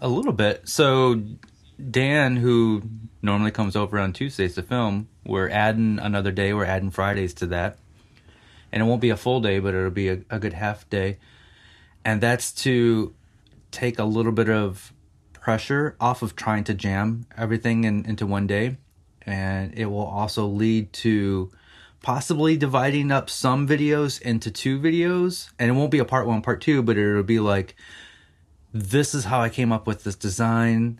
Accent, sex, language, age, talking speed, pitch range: American, male, English, 30-49, 175 wpm, 100-125 Hz